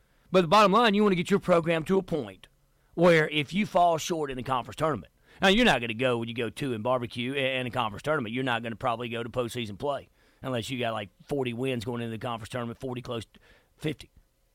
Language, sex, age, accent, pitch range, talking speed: English, male, 40-59, American, 125-170 Hz, 255 wpm